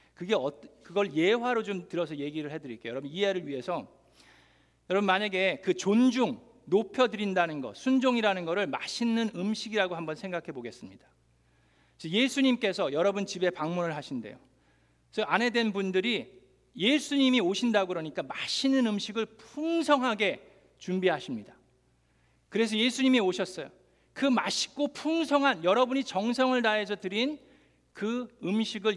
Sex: male